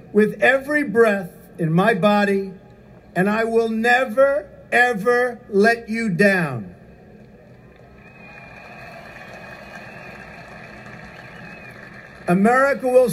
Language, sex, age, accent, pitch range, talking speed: English, male, 50-69, American, 190-255 Hz, 75 wpm